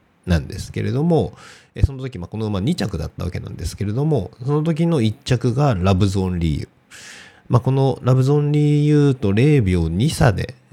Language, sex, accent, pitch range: Japanese, male, native, 90-125 Hz